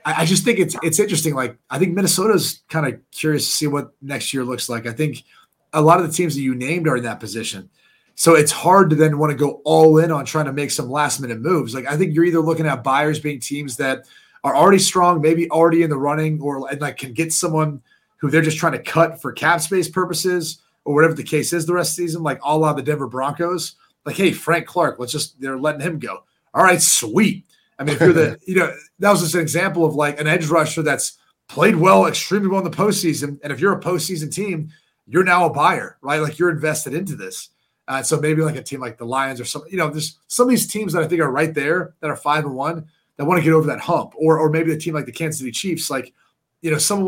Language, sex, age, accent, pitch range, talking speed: English, male, 30-49, American, 145-170 Hz, 260 wpm